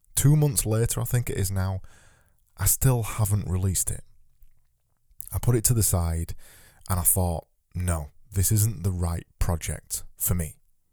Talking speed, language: 165 wpm, English